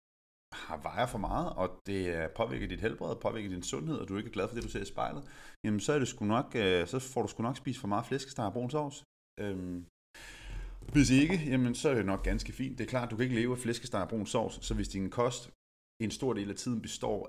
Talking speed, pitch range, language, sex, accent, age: 235 wpm, 90-115 Hz, Danish, male, native, 30-49